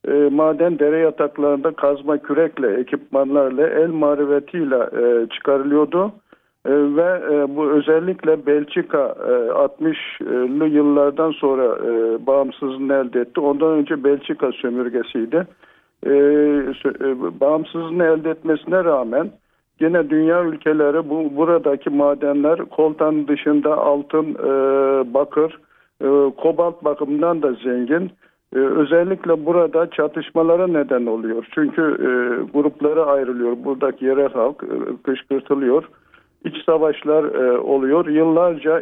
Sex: male